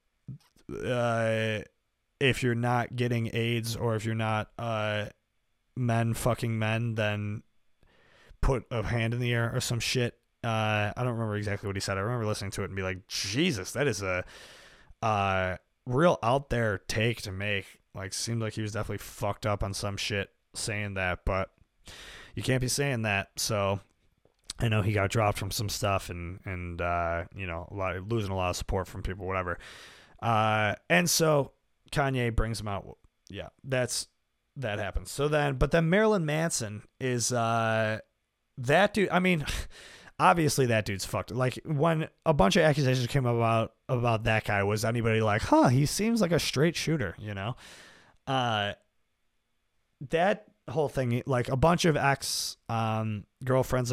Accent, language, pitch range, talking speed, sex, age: American, English, 100-125 Hz, 170 wpm, male, 20-39